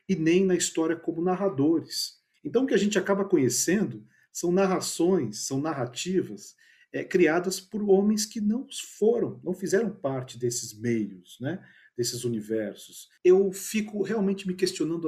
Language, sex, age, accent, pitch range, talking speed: Portuguese, male, 50-69, Brazilian, 125-175 Hz, 145 wpm